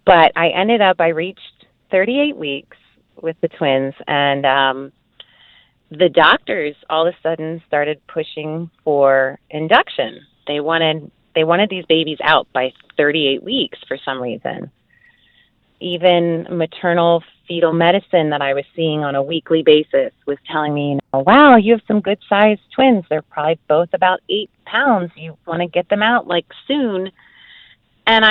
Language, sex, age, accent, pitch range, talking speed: English, female, 30-49, American, 150-185 Hz, 155 wpm